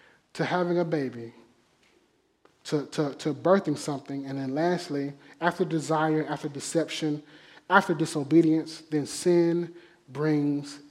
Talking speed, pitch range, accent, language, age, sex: 115 wpm, 140-175 Hz, American, English, 30-49, male